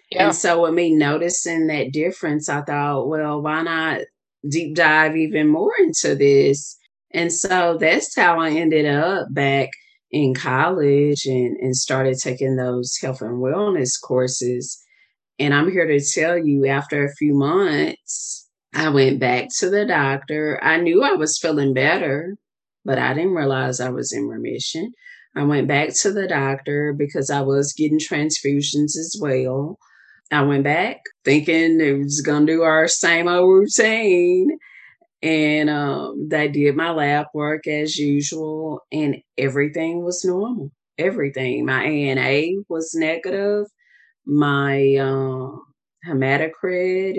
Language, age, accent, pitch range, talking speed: English, 30-49, American, 140-175 Hz, 145 wpm